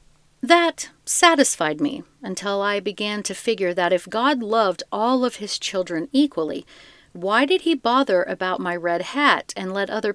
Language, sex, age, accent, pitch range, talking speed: English, female, 50-69, American, 185-260 Hz, 165 wpm